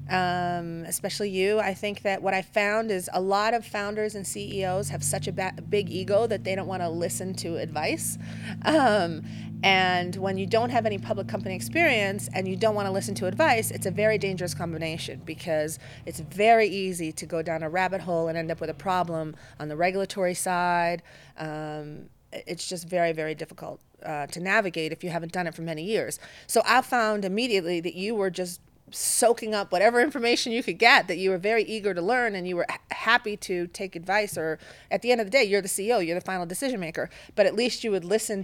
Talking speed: 220 wpm